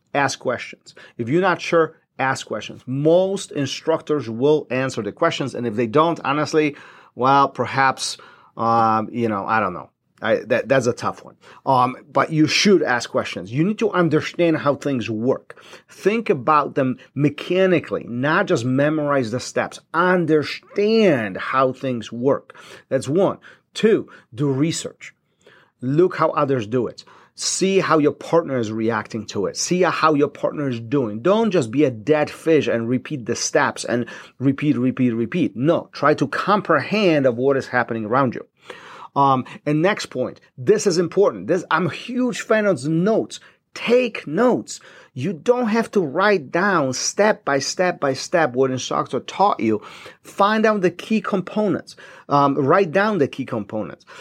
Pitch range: 130-175 Hz